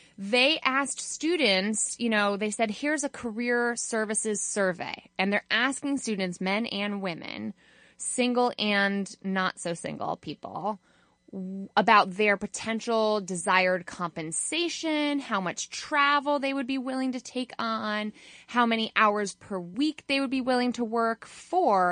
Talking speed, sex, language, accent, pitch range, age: 140 wpm, female, English, American, 175-235 Hz, 20-39